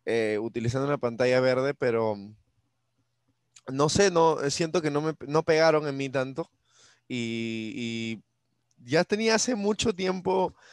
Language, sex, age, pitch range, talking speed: Spanish, male, 20-39, 120-150 Hz, 140 wpm